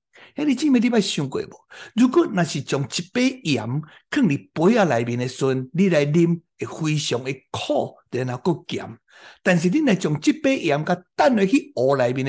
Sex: male